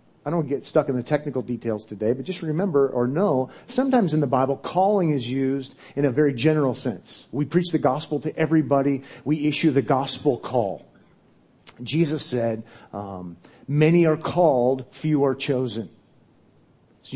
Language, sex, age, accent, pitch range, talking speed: English, male, 40-59, American, 125-155 Hz, 165 wpm